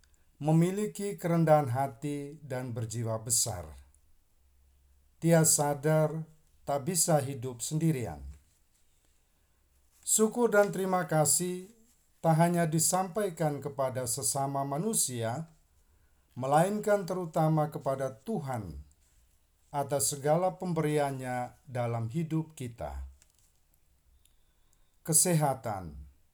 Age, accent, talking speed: 50-69, native, 75 wpm